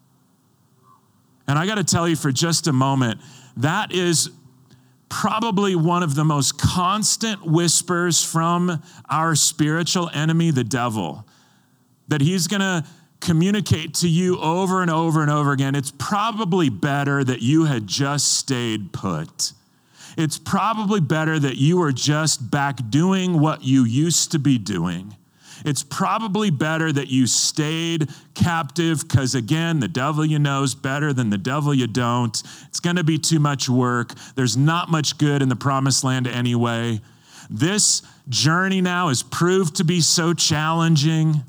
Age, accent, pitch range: 40-59, American, 135-170 Hz